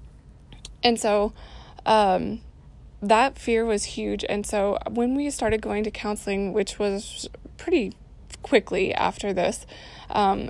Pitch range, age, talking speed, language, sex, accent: 205-235 Hz, 20-39, 125 wpm, English, female, American